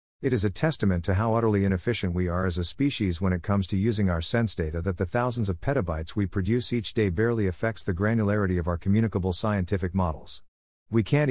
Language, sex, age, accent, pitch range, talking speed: English, male, 50-69, American, 90-115 Hz, 220 wpm